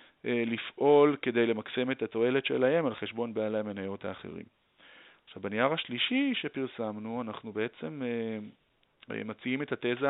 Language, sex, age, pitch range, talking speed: Hebrew, male, 40-59, 105-130 Hz, 125 wpm